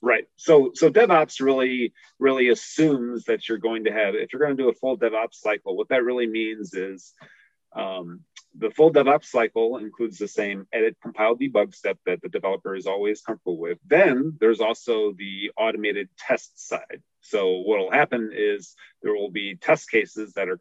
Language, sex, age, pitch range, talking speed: English, male, 30-49, 105-165 Hz, 185 wpm